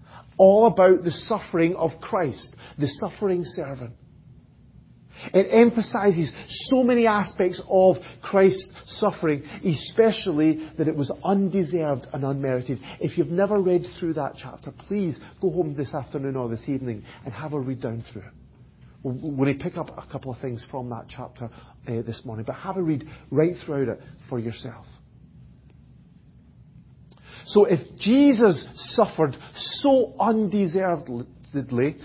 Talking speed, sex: 140 wpm, male